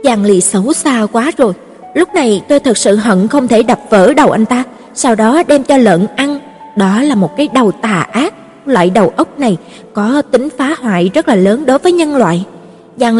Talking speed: 220 wpm